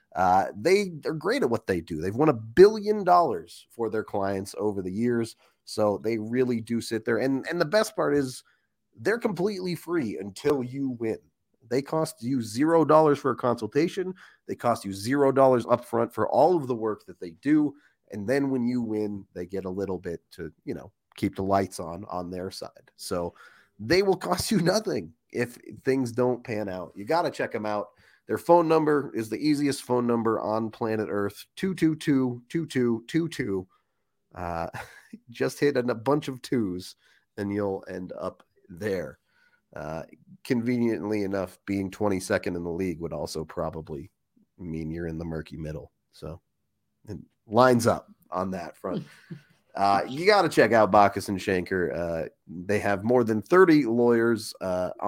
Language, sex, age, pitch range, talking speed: English, male, 30-49, 100-140 Hz, 180 wpm